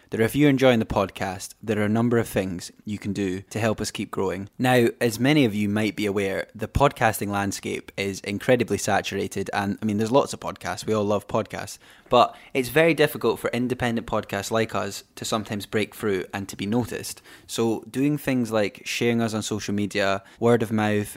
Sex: male